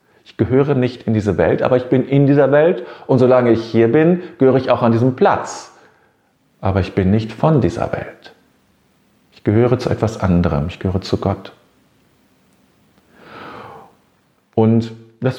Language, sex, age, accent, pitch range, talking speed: German, male, 40-59, German, 100-140 Hz, 160 wpm